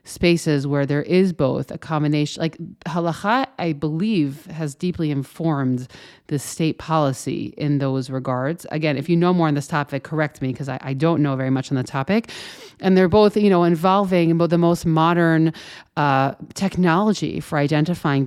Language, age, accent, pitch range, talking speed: English, 30-49, American, 145-190 Hz, 175 wpm